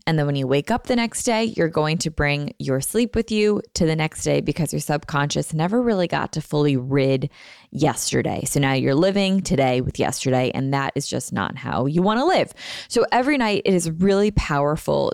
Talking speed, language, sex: 220 wpm, English, female